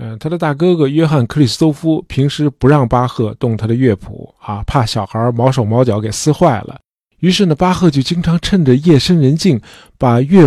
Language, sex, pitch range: Chinese, male, 115-145 Hz